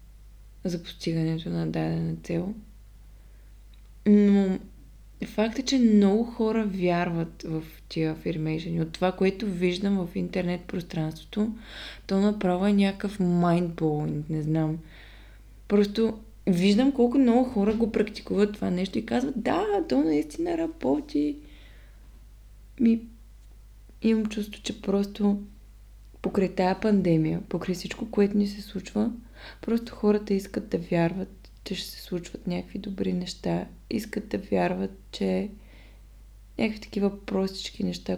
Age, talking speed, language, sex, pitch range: 20-39, 125 wpm, Bulgarian, female, 160-210 Hz